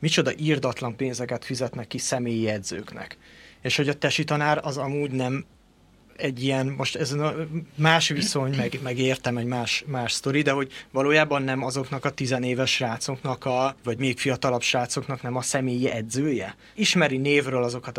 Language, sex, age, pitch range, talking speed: Hungarian, male, 30-49, 125-160 Hz, 155 wpm